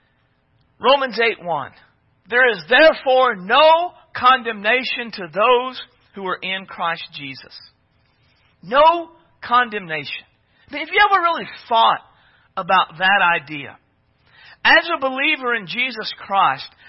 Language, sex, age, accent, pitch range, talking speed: English, male, 50-69, American, 235-320 Hz, 115 wpm